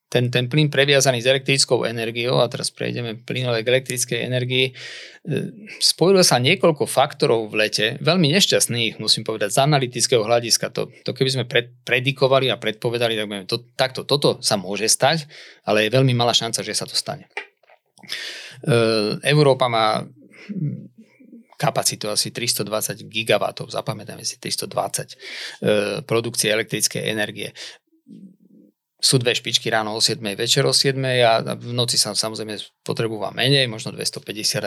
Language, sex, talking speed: Slovak, male, 135 wpm